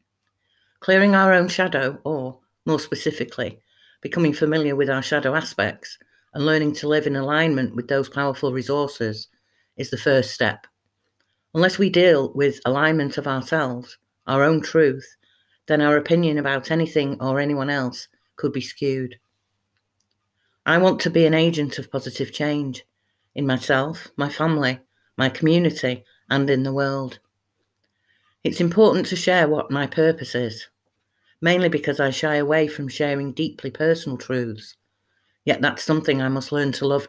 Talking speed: 150 wpm